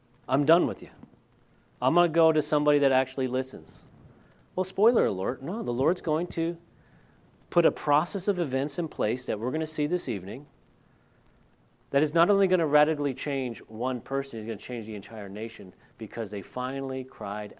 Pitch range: 120-150 Hz